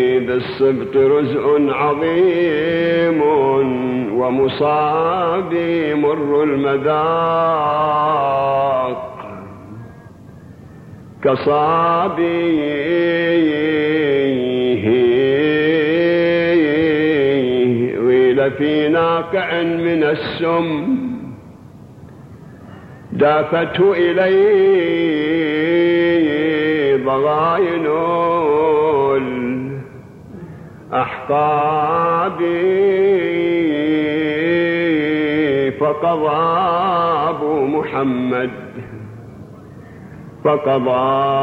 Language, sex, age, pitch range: Arabic, male, 50-69, 140-170 Hz